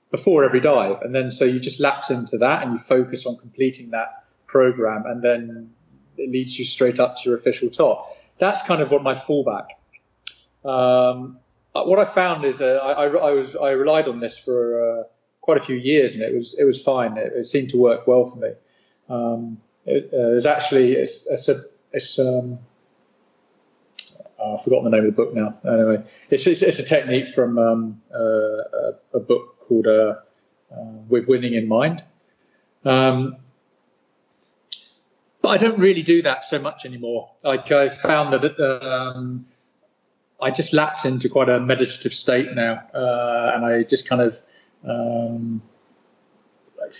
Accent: British